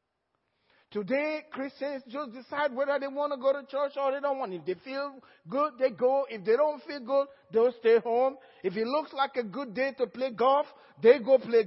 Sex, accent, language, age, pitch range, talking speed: male, Nigerian, English, 50-69, 210-285 Hz, 215 wpm